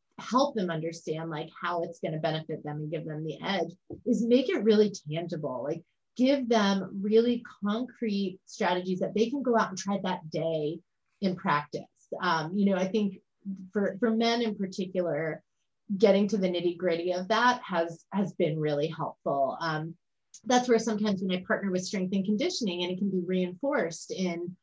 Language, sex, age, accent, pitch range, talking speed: English, female, 30-49, American, 165-215 Hz, 185 wpm